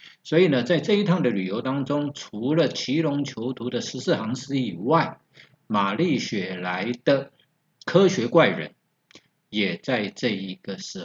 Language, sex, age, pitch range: Chinese, male, 50-69, 105-150 Hz